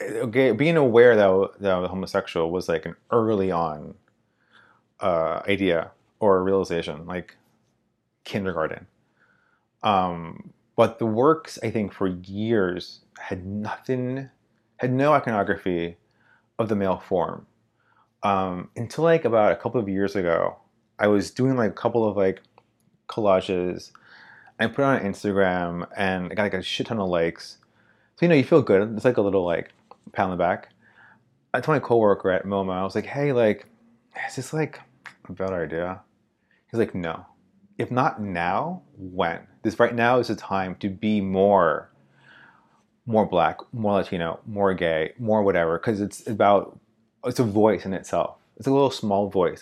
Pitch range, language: 95-115 Hz, English